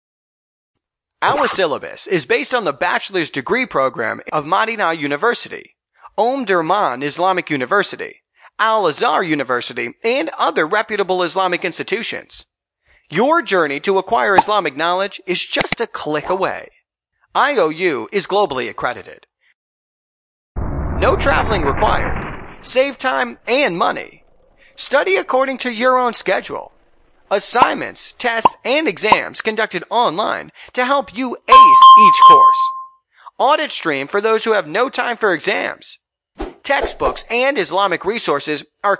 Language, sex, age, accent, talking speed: English, male, 30-49, American, 120 wpm